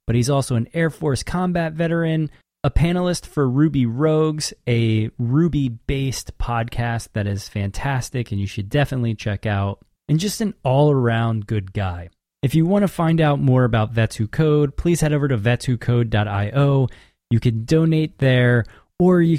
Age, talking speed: 20-39, 165 wpm